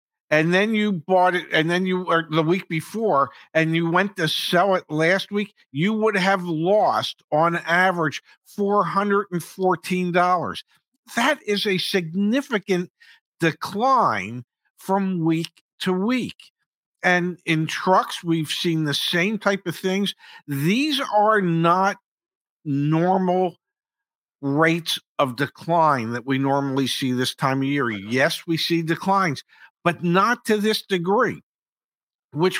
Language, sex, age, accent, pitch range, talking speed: English, male, 50-69, American, 140-195 Hz, 130 wpm